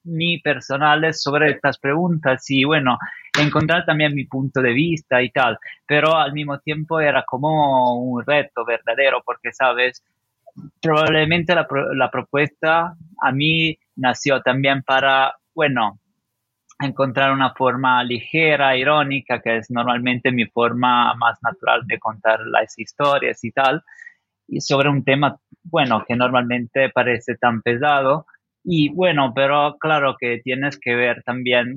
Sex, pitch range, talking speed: male, 125-150 Hz, 140 wpm